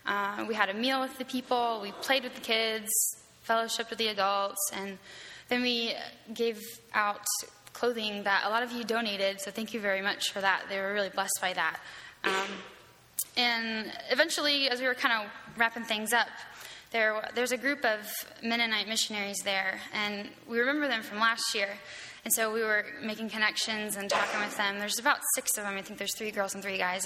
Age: 10-29